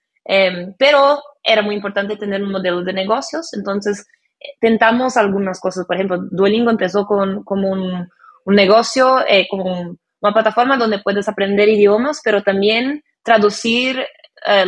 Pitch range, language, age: 190-230 Hz, Spanish, 20-39